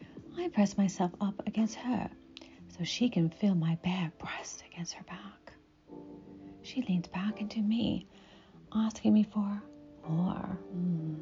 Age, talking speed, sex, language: 40-59, 140 wpm, female, English